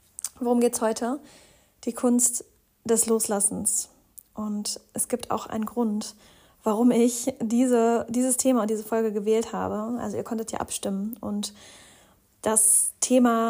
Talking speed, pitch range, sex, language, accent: 135 wpm, 215-235 Hz, female, German, German